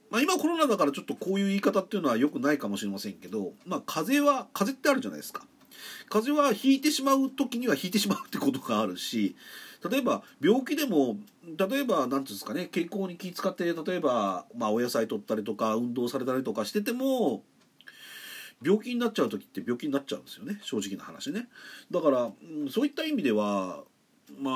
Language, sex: Japanese, male